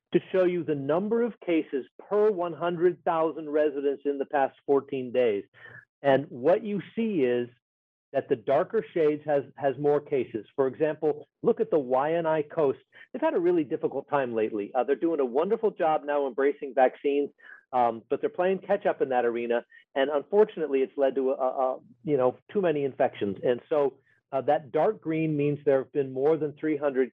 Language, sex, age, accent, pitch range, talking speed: English, male, 50-69, American, 130-165 Hz, 195 wpm